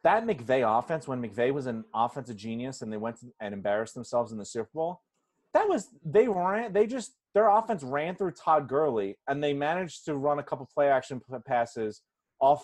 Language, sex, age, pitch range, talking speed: English, male, 30-49, 125-185 Hz, 205 wpm